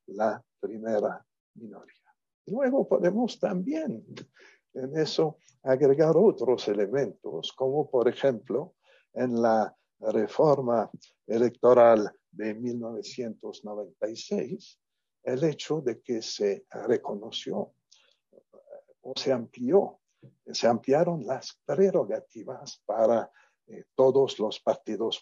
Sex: male